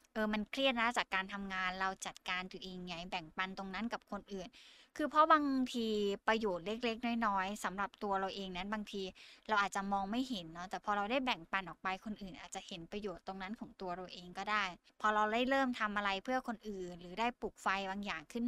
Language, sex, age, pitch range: Thai, female, 20-39, 190-235 Hz